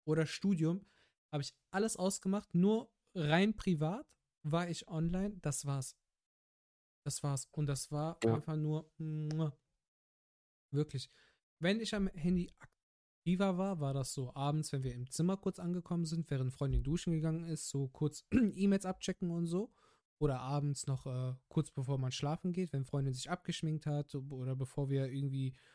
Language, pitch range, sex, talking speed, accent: German, 135-175 Hz, male, 160 wpm, German